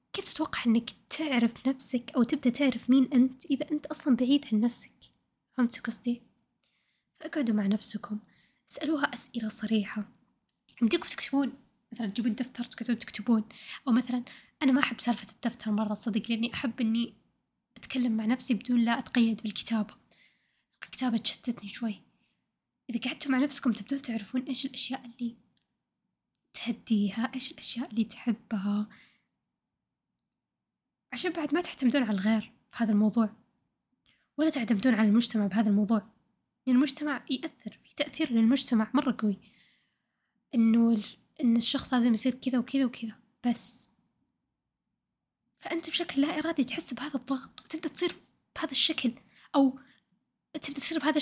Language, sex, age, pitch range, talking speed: Arabic, female, 10-29, 225-270 Hz, 130 wpm